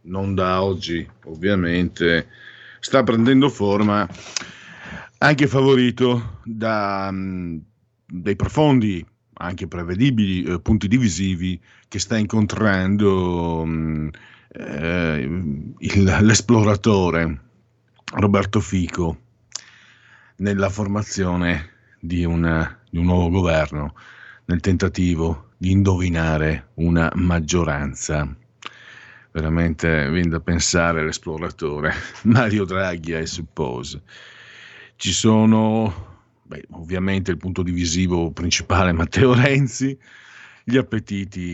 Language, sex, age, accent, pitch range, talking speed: Italian, male, 50-69, native, 85-110 Hz, 80 wpm